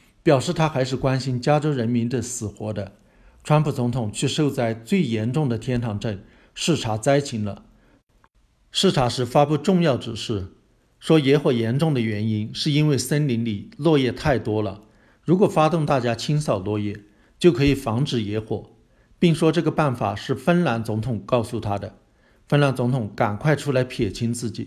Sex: male